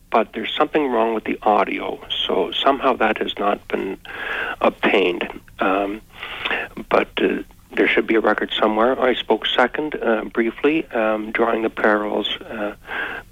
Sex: male